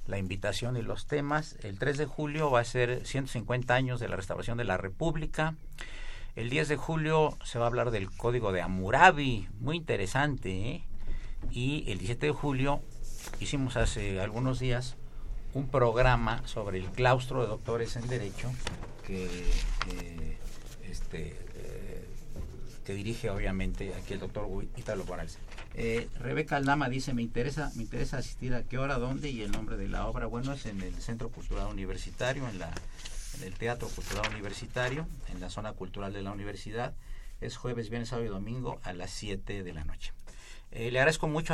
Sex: male